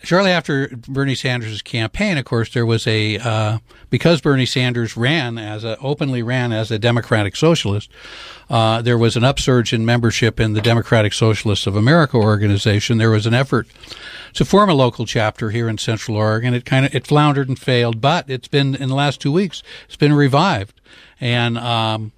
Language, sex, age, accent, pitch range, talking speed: English, male, 60-79, American, 115-135 Hz, 200 wpm